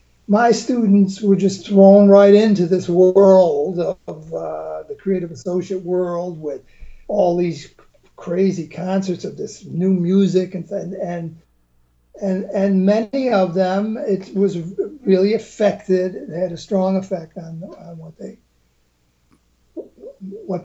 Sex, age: male, 50-69